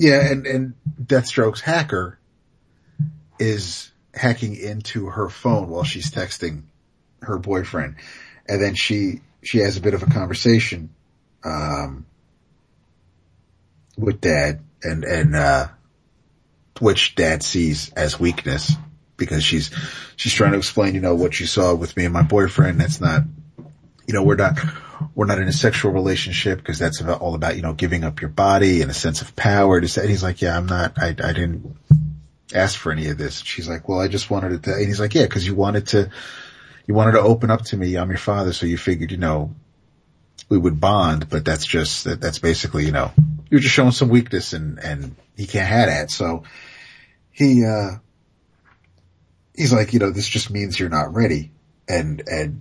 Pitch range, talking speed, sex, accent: 85-115 Hz, 190 wpm, male, American